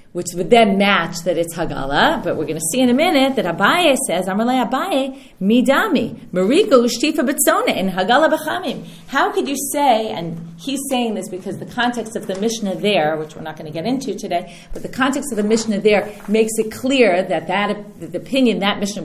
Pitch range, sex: 175-240 Hz, female